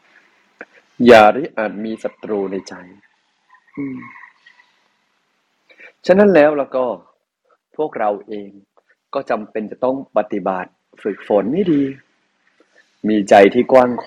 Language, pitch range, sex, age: Thai, 110-145 Hz, male, 30-49